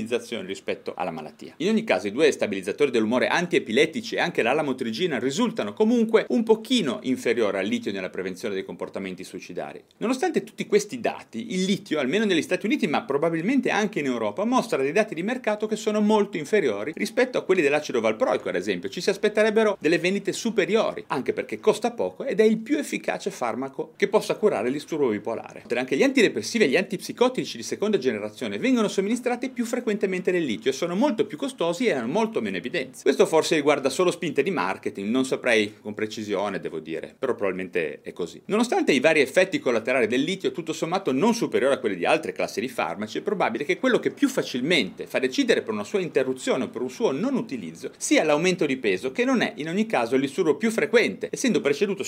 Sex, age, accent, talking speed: male, 30-49, native, 200 wpm